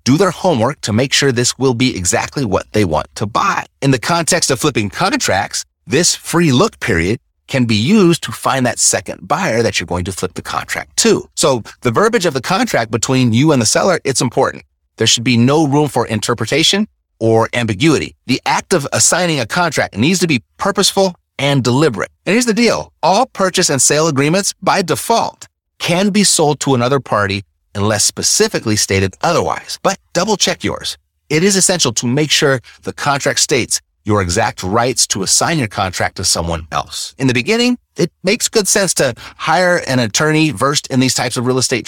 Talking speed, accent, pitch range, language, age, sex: 195 wpm, American, 105-160 Hz, English, 30-49, male